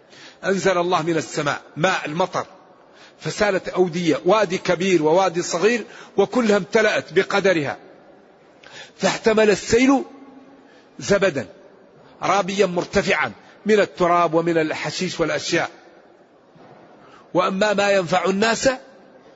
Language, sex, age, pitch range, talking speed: Arabic, male, 50-69, 175-225 Hz, 90 wpm